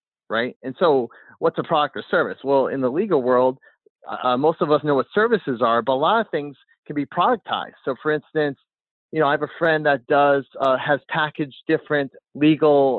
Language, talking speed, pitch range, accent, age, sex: English, 210 wpm, 130-155 Hz, American, 30-49, male